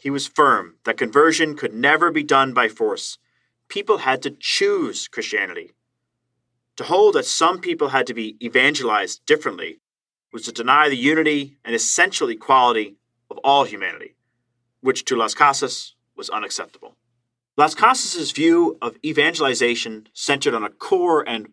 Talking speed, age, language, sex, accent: 150 wpm, 30-49, English, male, American